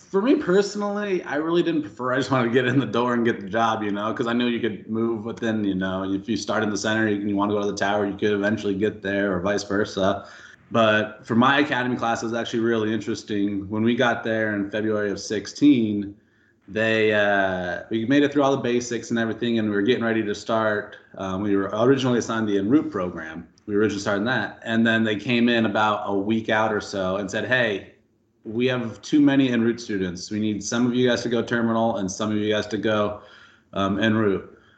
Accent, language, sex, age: American, English, male, 30-49